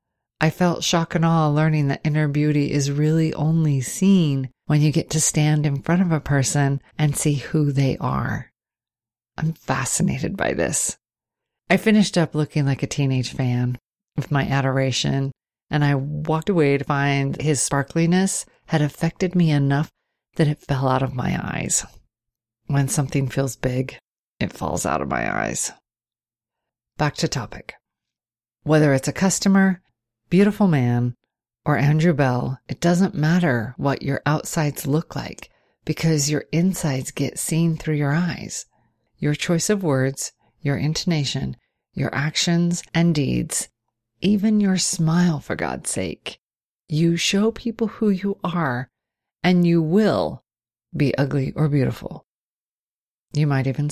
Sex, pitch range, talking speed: female, 135-165 Hz, 145 wpm